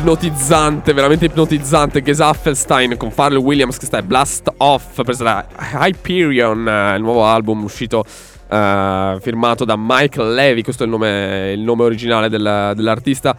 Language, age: Italian, 10-29